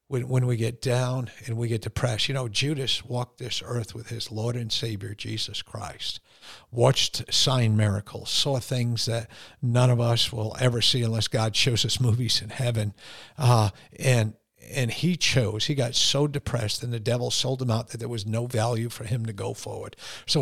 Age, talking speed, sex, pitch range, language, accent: 50-69, 195 wpm, male, 115-140 Hz, English, American